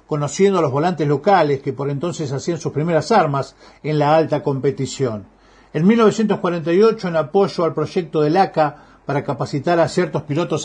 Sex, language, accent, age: male, Spanish, Argentinian, 50-69